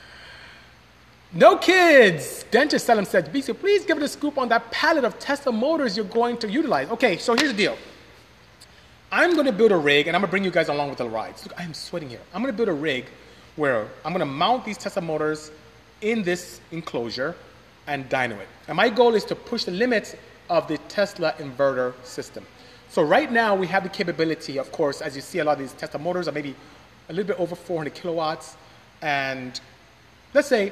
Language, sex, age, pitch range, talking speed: English, male, 30-49, 140-225 Hz, 215 wpm